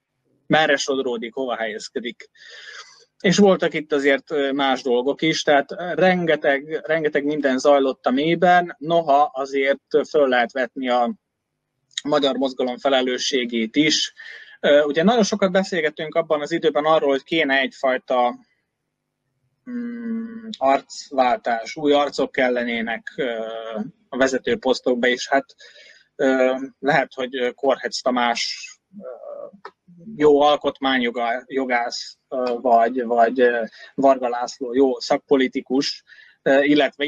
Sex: male